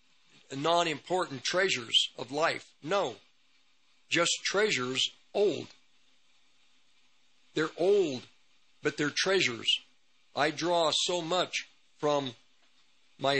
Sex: male